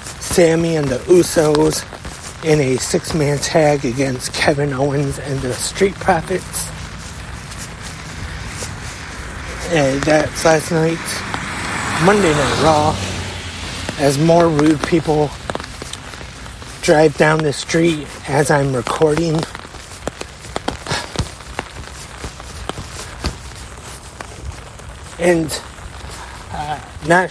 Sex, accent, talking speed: male, American, 75 wpm